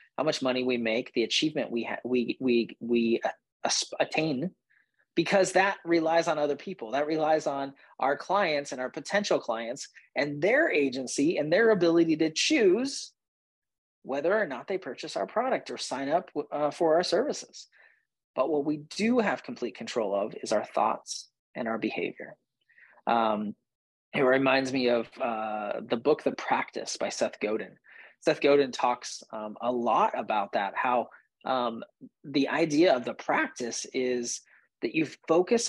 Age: 30-49